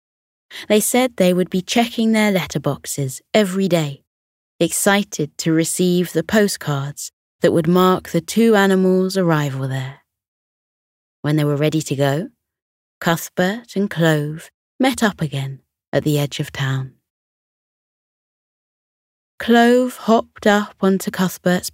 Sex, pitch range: female, 145-190 Hz